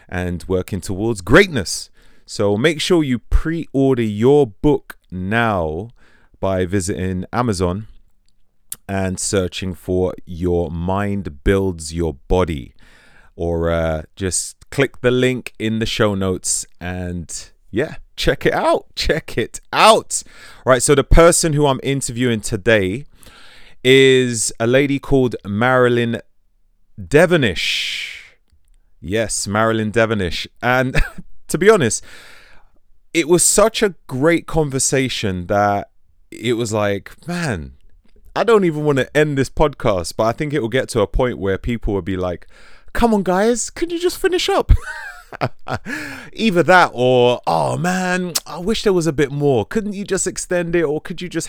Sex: male